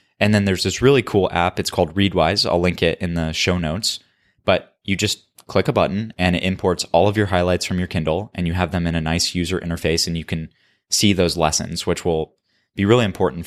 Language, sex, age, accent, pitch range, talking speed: English, male, 20-39, American, 85-100 Hz, 235 wpm